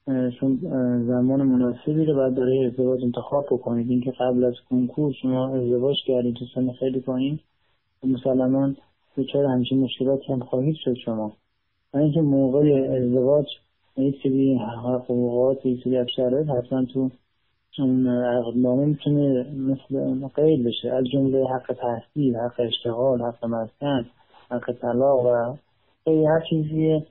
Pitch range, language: 125-135 Hz, Persian